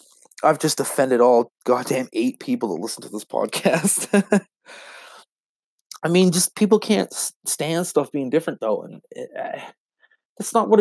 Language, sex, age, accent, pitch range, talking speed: English, male, 20-39, American, 135-210 Hz, 145 wpm